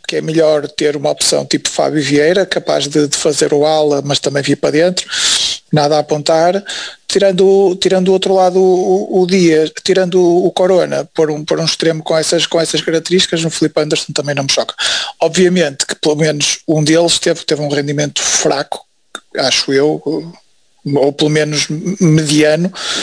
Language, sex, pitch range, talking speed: Portuguese, male, 150-180 Hz, 180 wpm